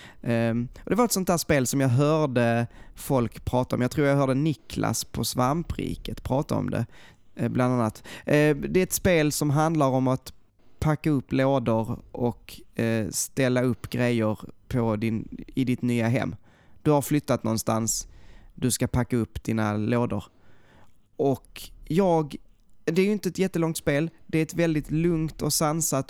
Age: 20-39